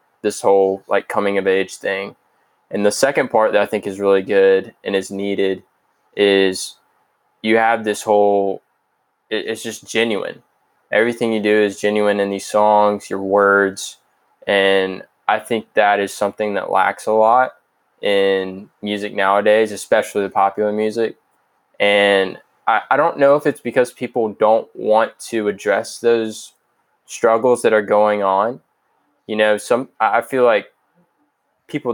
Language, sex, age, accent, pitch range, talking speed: English, male, 20-39, American, 100-115 Hz, 150 wpm